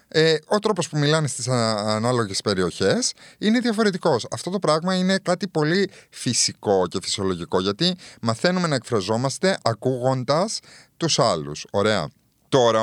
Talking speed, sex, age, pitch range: 135 wpm, male, 30-49, 100-145 Hz